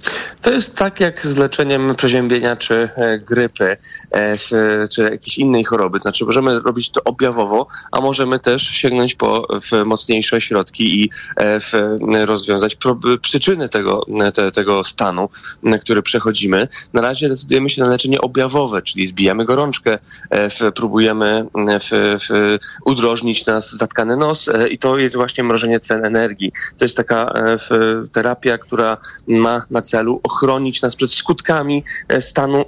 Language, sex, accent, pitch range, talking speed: Polish, male, native, 110-130 Hz, 140 wpm